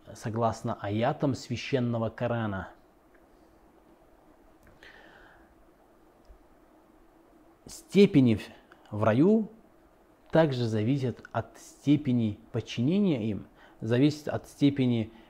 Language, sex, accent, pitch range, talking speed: Russian, male, native, 110-140 Hz, 65 wpm